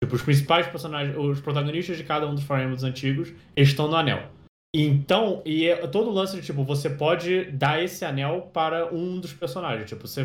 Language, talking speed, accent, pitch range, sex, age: Portuguese, 205 wpm, Brazilian, 140-175 Hz, male, 20-39